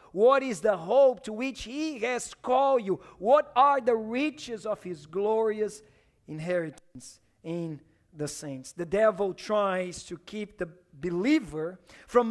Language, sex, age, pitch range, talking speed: English, male, 40-59, 185-275 Hz, 140 wpm